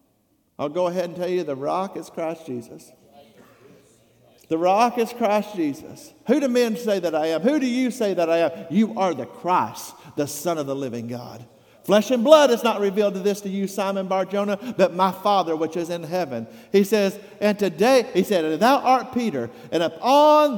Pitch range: 170-255 Hz